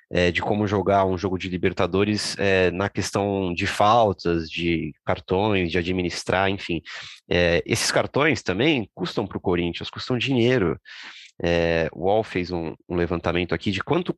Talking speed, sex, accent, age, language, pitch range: 145 wpm, male, Brazilian, 30-49, Portuguese, 90-110 Hz